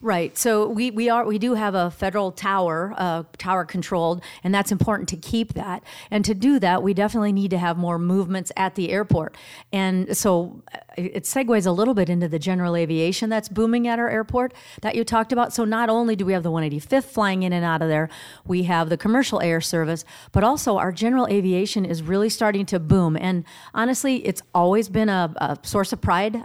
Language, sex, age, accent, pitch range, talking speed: English, female, 40-59, American, 175-215 Hz, 210 wpm